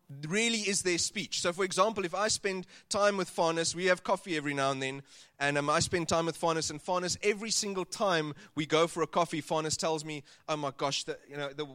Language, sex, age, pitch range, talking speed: English, male, 30-49, 150-200 Hz, 240 wpm